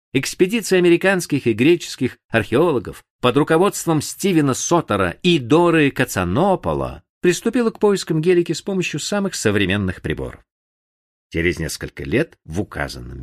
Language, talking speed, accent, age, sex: Russian, 120 wpm, native, 50-69, male